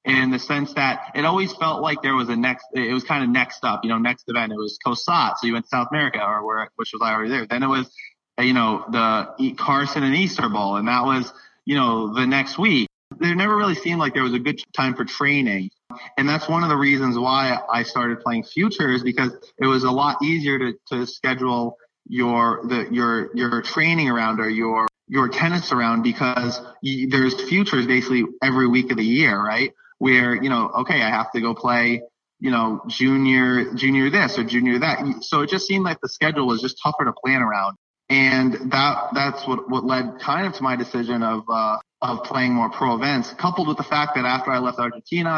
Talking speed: 220 wpm